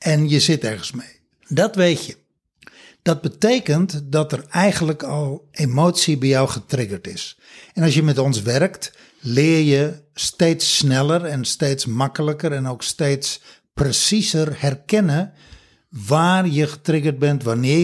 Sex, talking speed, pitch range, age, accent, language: male, 140 wpm, 135-170 Hz, 60-79, Dutch, Dutch